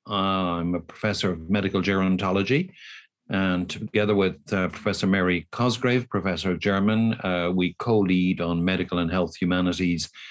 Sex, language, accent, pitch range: male, English, Irish, 90-105 Hz